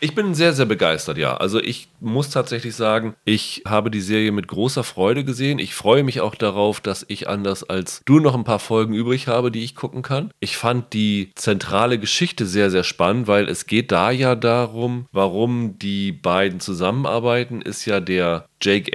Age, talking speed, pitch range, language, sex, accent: 30-49, 195 wpm, 95-120 Hz, German, male, German